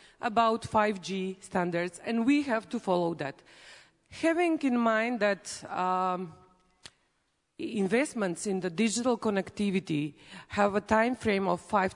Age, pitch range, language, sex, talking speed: 40-59, 185-230 Hz, English, female, 125 wpm